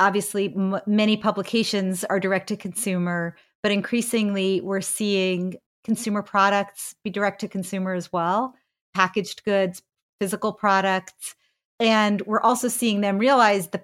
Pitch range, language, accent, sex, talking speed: 185-220 Hz, English, American, female, 115 wpm